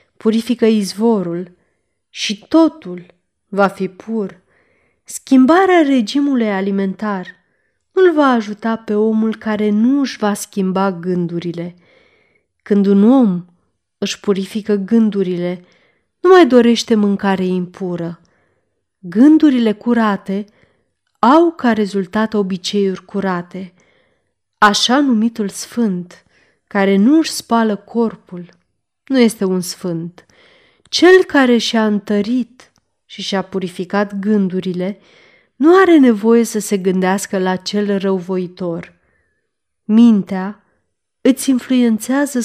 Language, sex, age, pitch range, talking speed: Romanian, female, 20-39, 185-235 Hz, 100 wpm